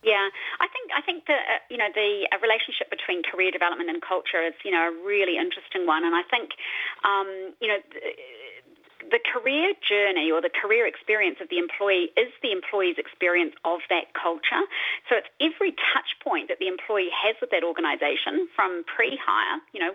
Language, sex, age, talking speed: English, female, 40-59, 195 wpm